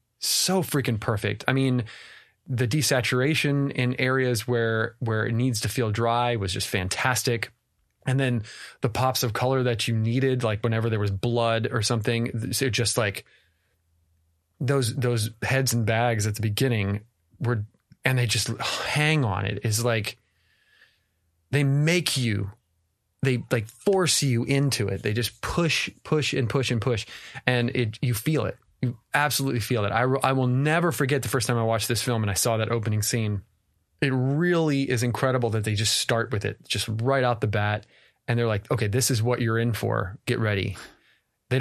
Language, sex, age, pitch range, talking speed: English, male, 20-39, 105-130 Hz, 185 wpm